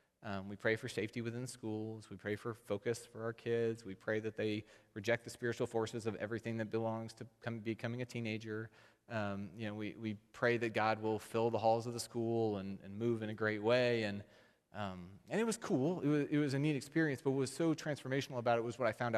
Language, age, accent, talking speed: English, 30-49, American, 235 wpm